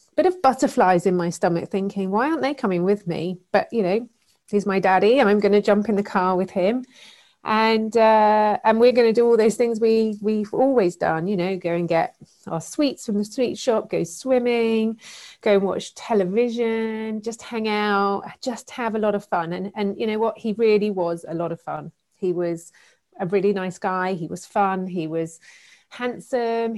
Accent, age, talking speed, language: British, 30-49, 210 wpm, English